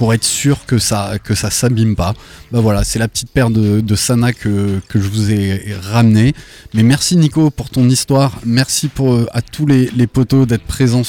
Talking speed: 210 wpm